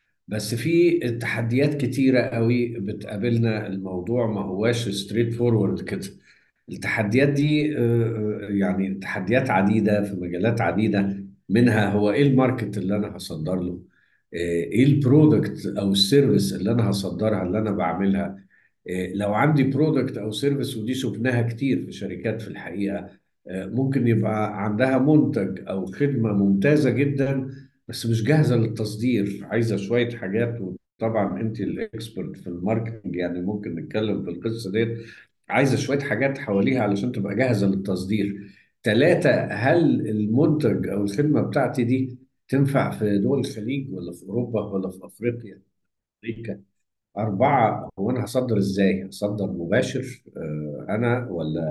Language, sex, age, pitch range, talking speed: Arabic, male, 50-69, 100-125 Hz, 130 wpm